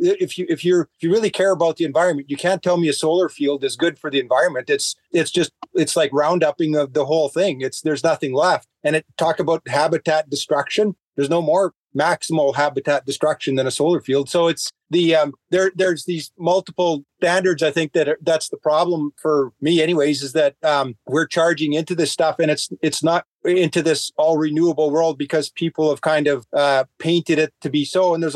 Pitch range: 140-165 Hz